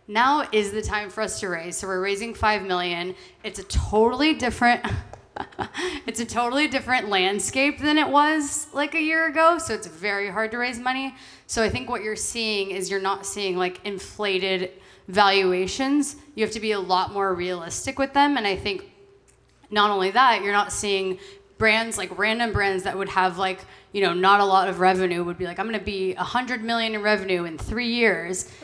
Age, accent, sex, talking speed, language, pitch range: 20-39, American, female, 205 wpm, English, 185-225 Hz